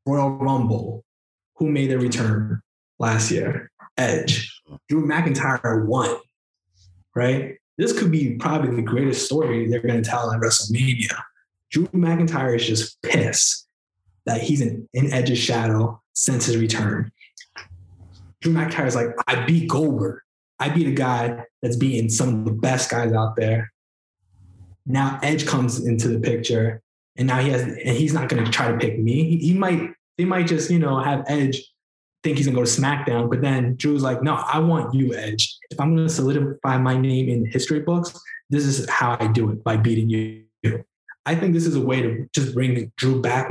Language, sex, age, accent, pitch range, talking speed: English, male, 20-39, American, 115-145 Hz, 180 wpm